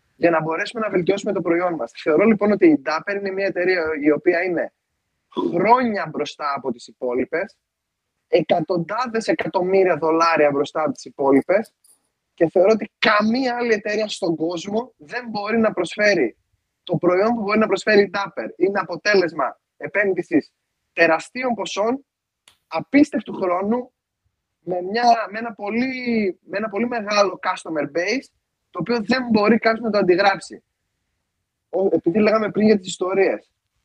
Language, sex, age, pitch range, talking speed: Greek, male, 20-39, 175-225 Hz, 145 wpm